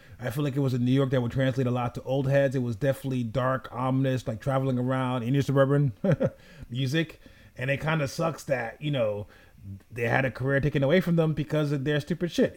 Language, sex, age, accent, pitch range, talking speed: English, male, 30-49, American, 125-160 Hz, 235 wpm